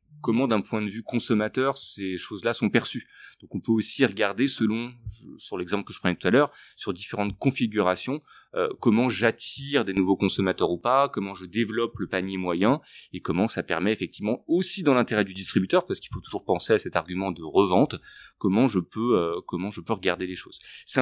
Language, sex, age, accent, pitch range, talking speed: French, male, 30-49, French, 100-135 Hz, 205 wpm